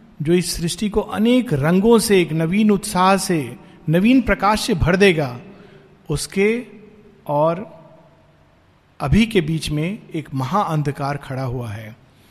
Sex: male